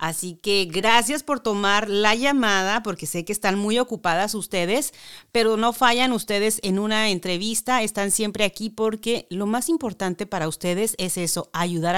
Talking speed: 165 wpm